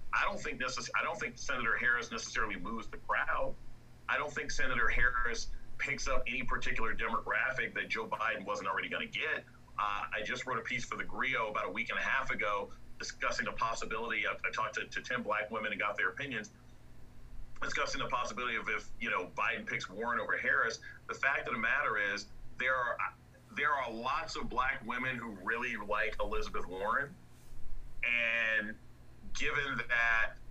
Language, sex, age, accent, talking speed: English, male, 40-59, American, 190 wpm